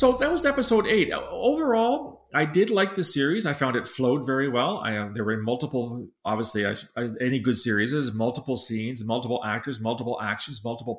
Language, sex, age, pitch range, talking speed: English, male, 40-59, 110-145 Hz, 180 wpm